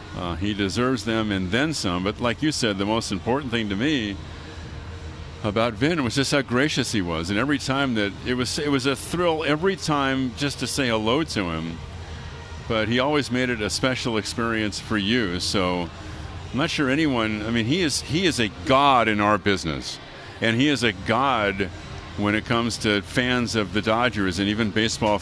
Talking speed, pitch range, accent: 200 wpm, 95-120 Hz, American